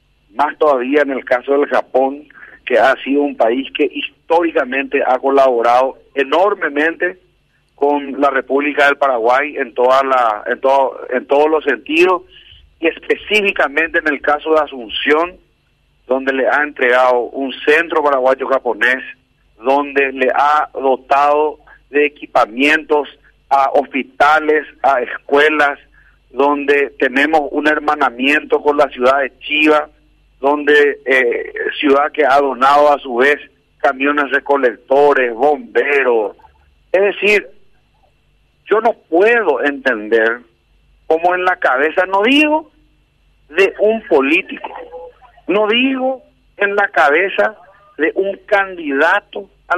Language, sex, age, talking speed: Spanish, male, 50-69, 120 wpm